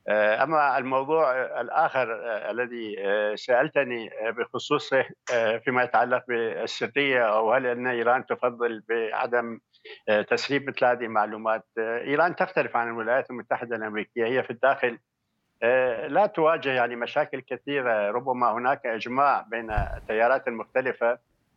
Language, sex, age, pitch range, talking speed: Arabic, male, 60-79, 110-135 Hz, 110 wpm